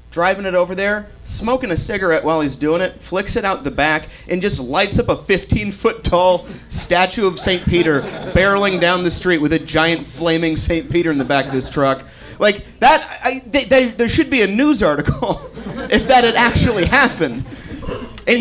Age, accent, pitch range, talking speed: 30-49, American, 150-225 Hz, 190 wpm